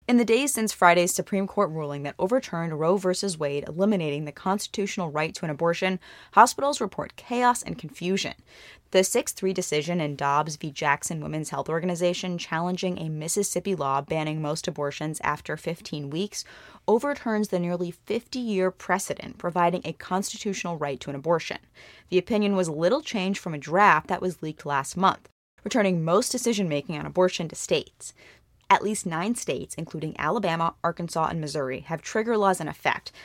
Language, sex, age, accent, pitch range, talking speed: English, female, 20-39, American, 155-200 Hz, 165 wpm